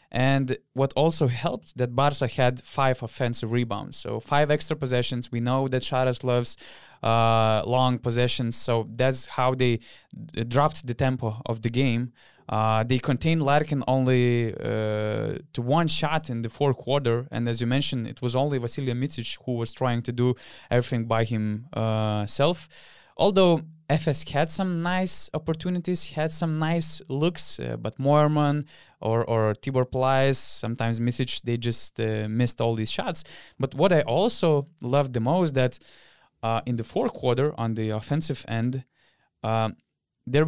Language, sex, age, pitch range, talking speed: English, male, 20-39, 120-150 Hz, 160 wpm